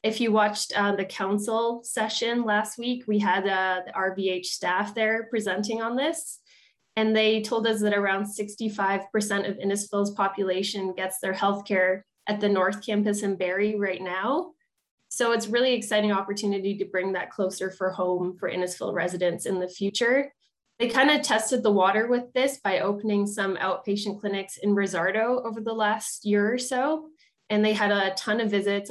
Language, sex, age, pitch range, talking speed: English, female, 20-39, 185-220 Hz, 175 wpm